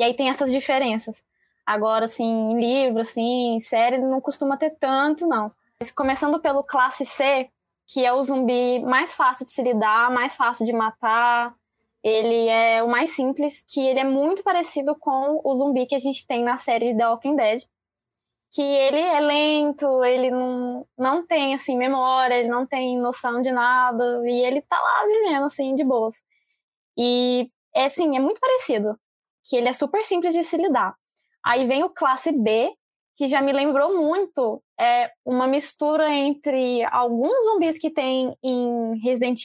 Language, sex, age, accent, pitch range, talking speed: Portuguese, female, 10-29, Brazilian, 245-310 Hz, 165 wpm